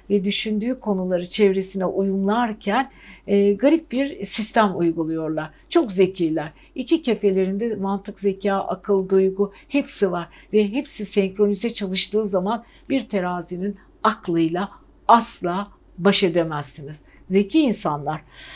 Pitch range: 185-225 Hz